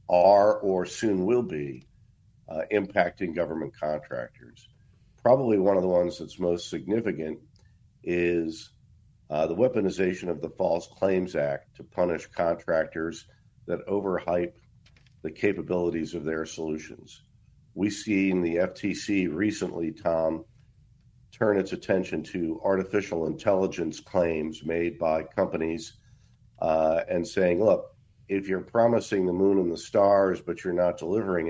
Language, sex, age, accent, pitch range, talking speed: English, male, 50-69, American, 85-105 Hz, 130 wpm